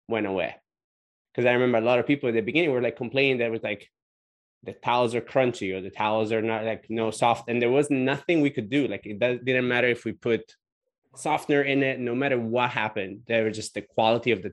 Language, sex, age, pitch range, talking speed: English, male, 20-39, 110-125 Hz, 240 wpm